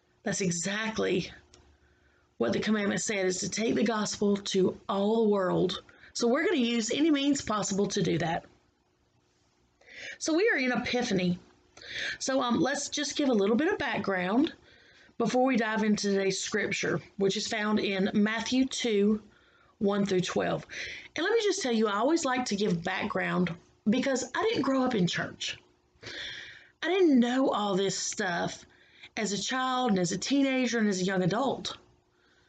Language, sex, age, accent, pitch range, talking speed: English, female, 30-49, American, 190-265 Hz, 170 wpm